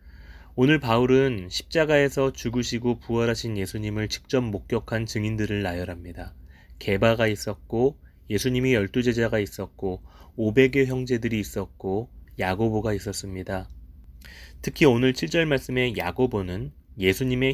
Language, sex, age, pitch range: Korean, male, 20-39, 90-130 Hz